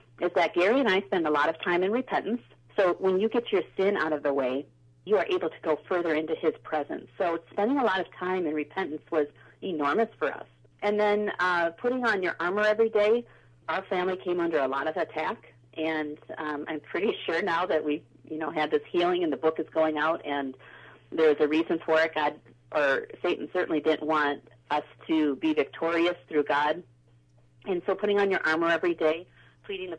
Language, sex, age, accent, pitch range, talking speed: English, female, 40-59, American, 145-180 Hz, 210 wpm